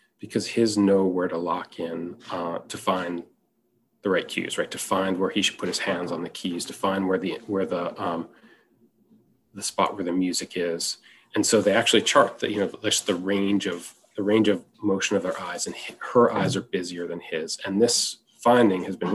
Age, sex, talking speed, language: 30-49, male, 215 wpm, English